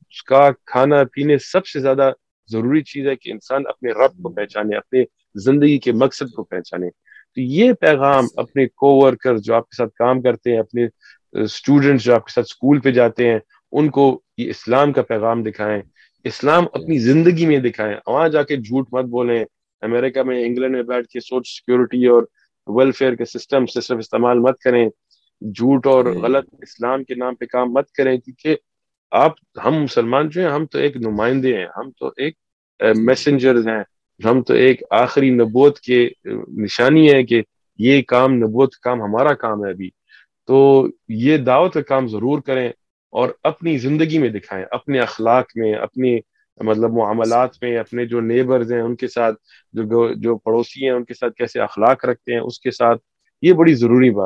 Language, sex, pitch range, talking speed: Urdu, male, 115-135 Hz, 180 wpm